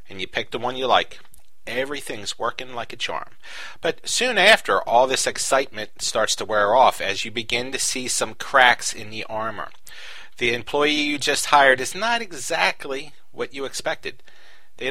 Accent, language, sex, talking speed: American, English, male, 175 wpm